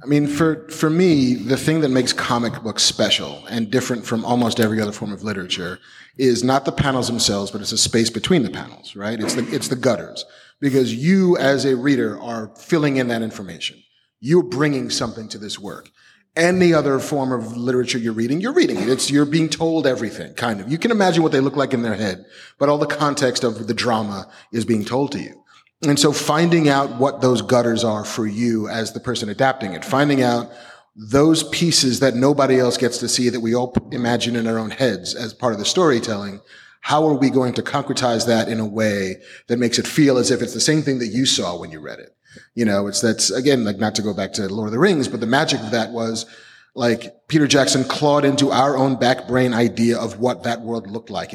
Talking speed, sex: 230 wpm, male